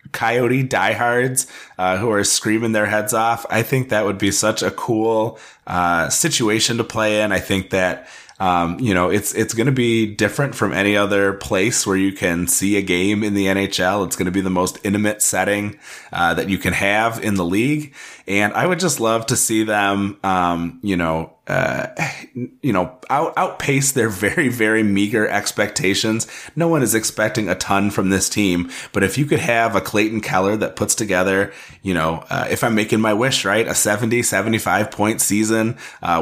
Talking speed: 195 wpm